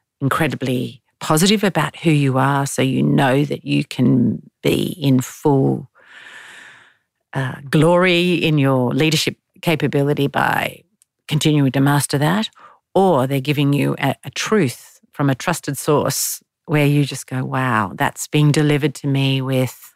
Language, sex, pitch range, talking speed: English, female, 135-170 Hz, 145 wpm